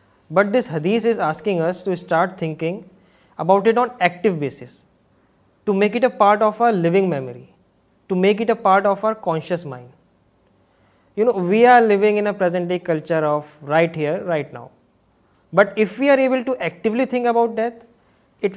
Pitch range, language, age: 160-210 Hz, Urdu, 20-39